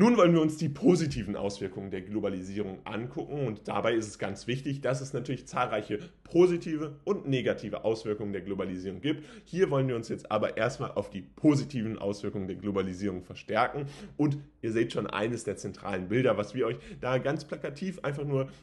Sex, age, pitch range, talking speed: male, 10-29, 105-140 Hz, 185 wpm